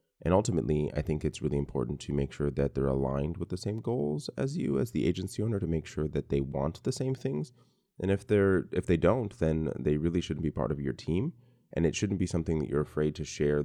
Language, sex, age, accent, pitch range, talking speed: English, male, 30-49, American, 70-90 Hz, 250 wpm